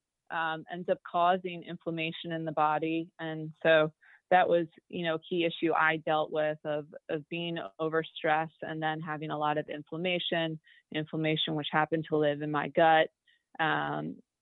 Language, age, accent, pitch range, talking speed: English, 30-49, American, 155-170 Hz, 160 wpm